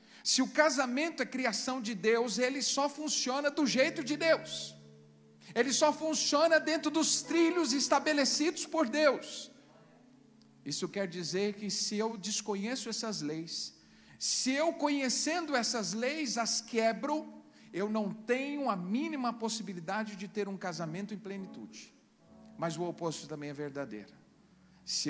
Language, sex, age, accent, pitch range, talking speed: Portuguese, male, 50-69, Brazilian, 205-325 Hz, 140 wpm